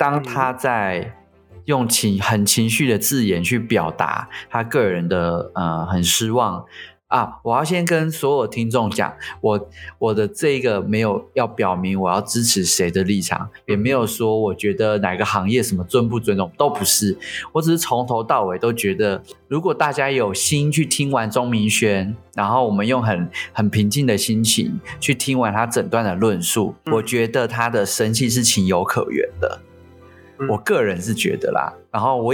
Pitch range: 100-130 Hz